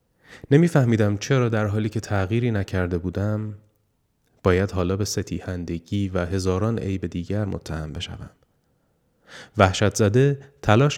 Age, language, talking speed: 30-49, Persian, 115 wpm